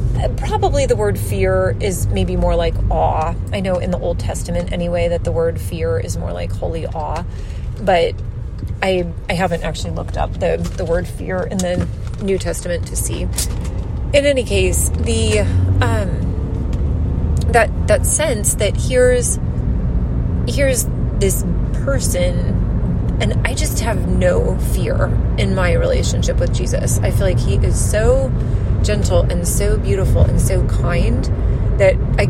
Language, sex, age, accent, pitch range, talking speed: English, female, 30-49, American, 90-115 Hz, 150 wpm